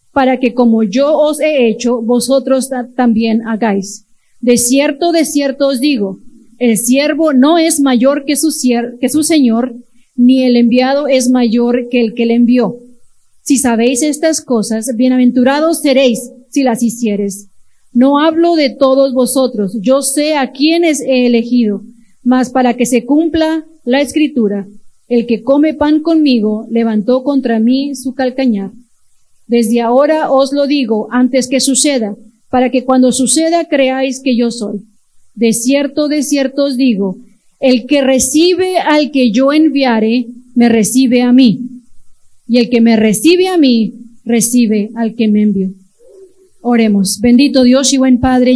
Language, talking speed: Spanish, 155 wpm